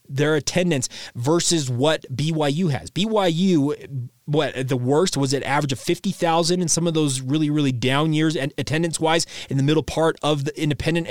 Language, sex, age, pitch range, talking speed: English, male, 30-49, 135-165 Hz, 185 wpm